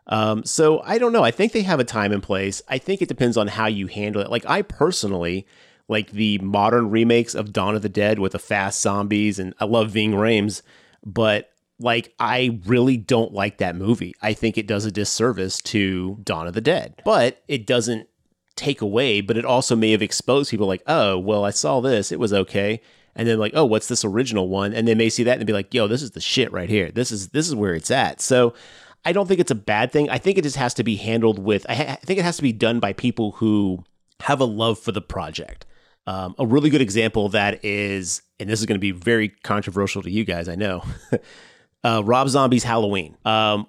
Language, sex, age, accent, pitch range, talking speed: English, male, 30-49, American, 100-120 Hz, 235 wpm